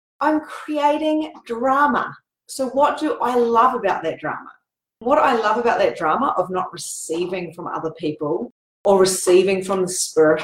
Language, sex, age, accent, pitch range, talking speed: English, female, 30-49, Australian, 175-235 Hz, 160 wpm